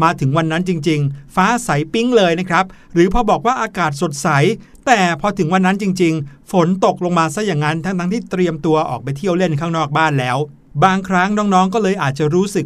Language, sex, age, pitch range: Thai, male, 60-79, 145-185 Hz